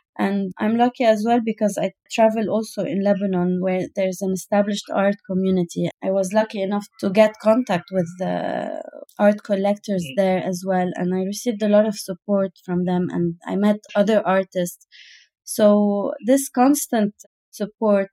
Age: 20-39